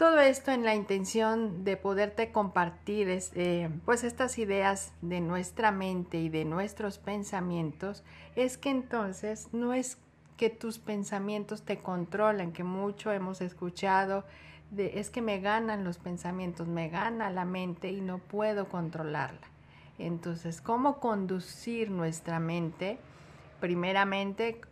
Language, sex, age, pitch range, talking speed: Spanish, female, 50-69, 170-205 Hz, 135 wpm